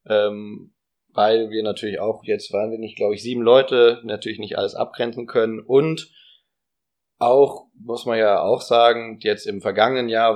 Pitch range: 110-135 Hz